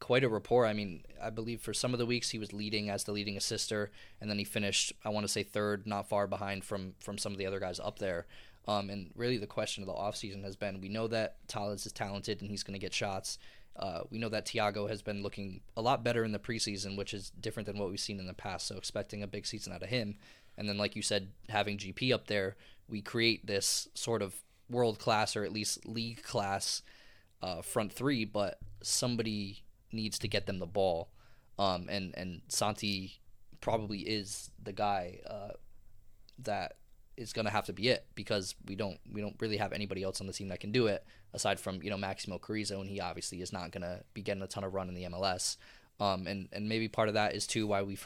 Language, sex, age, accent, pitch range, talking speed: English, male, 20-39, American, 100-110 Hz, 235 wpm